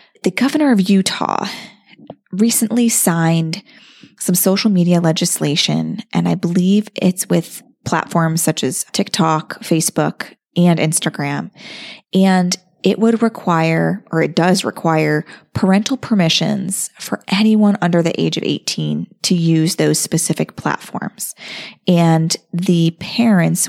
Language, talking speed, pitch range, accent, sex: English, 120 wpm, 160-195 Hz, American, female